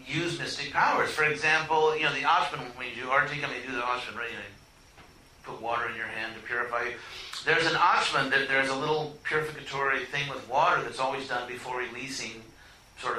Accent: American